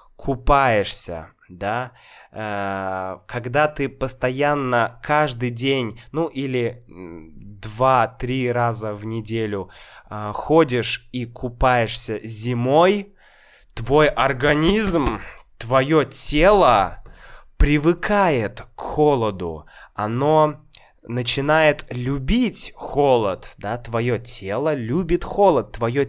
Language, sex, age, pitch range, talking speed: Russian, male, 20-39, 110-155 Hz, 80 wpm